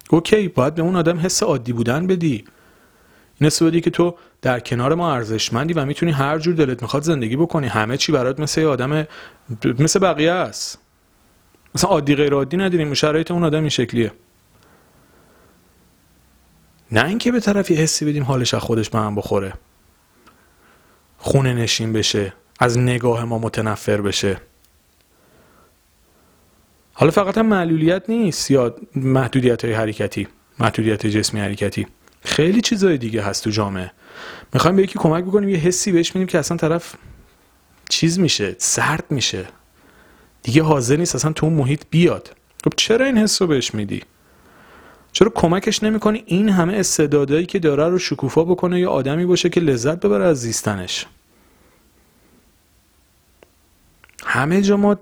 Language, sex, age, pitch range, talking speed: Persian, male, 40-59, 110-170 Hz, 145 wpm